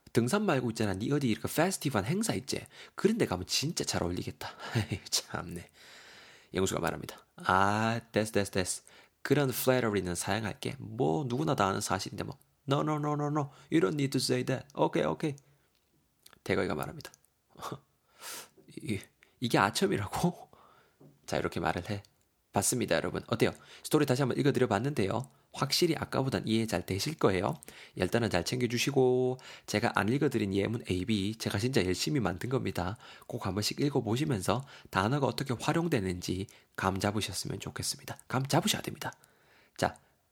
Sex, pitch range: male, 100-135 Hz